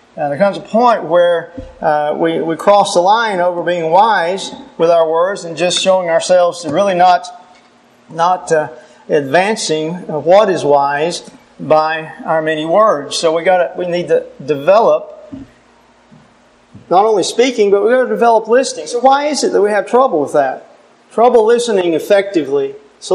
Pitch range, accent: 170-240 Hz, American